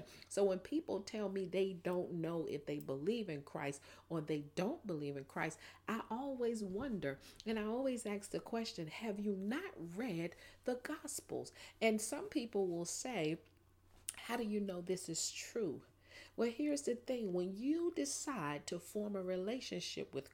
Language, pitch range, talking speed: English, 150-215 Hz, 170 wpm